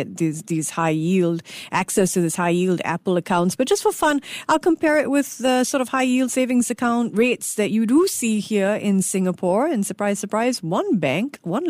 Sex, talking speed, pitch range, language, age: female, 190 wpm, 180-240 Hz, English, 50-69